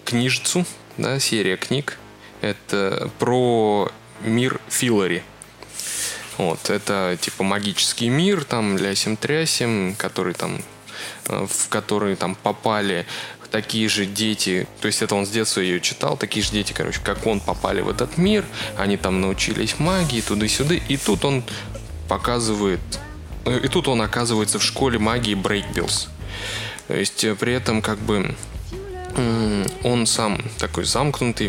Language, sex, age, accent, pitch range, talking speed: Russian, male, 20-39, native, 100-120 Hz, 130 wpm